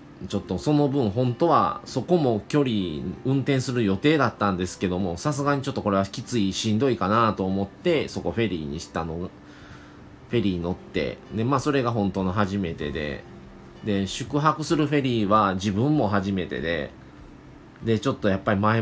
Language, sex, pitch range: Japanese, male, 100-130 Hz